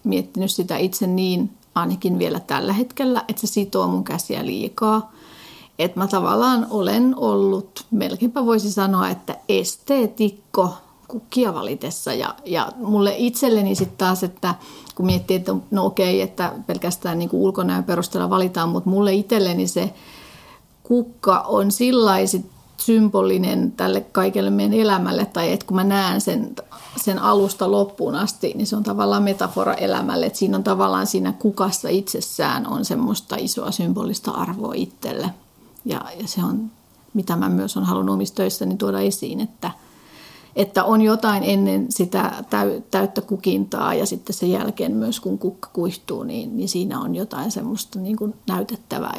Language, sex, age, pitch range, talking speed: Finnish, female, 40-59, 175-225 Hz, 145 wpm